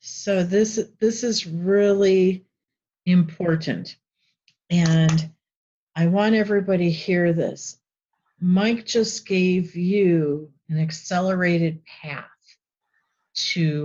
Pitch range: 160-200 Hz